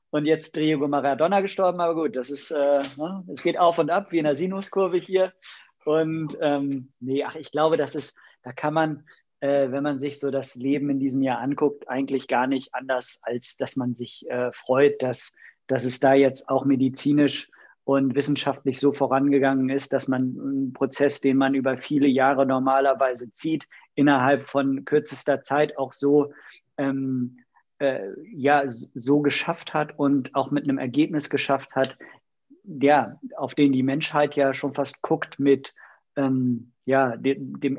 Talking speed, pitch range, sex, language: 170 wpm, 135-150 Hz, male, German